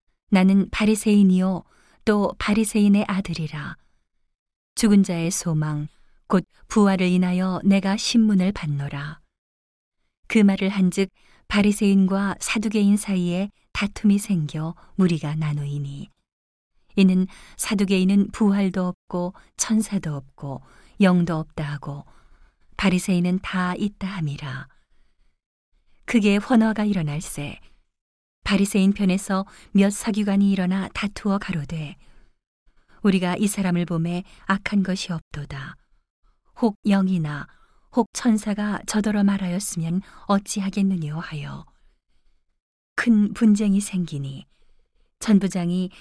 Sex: female